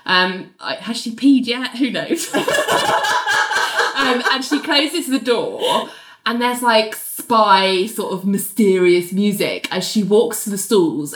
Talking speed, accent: 145 wpm, British